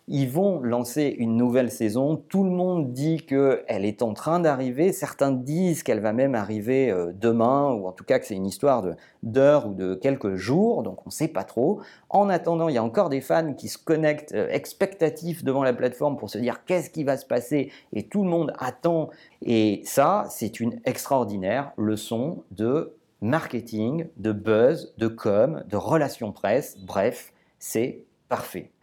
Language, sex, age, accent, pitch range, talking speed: French, male, 40-59, French, 120-180 Hz, 185 wpm